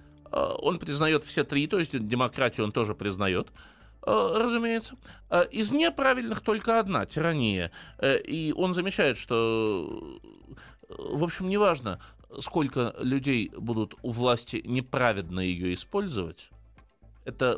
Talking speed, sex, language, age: 110 wpm, male, Russian, 20-39